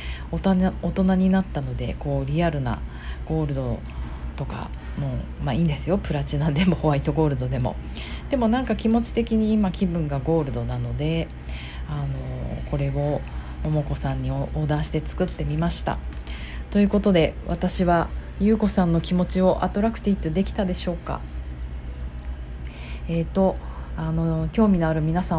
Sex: female